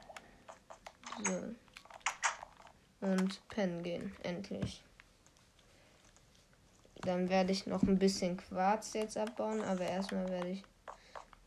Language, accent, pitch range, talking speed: German, German, 180-205 Hz, 100 wpm